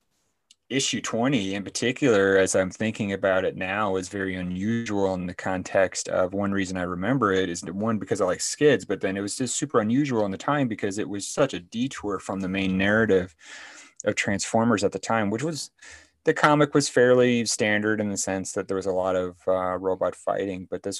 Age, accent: 30-49, American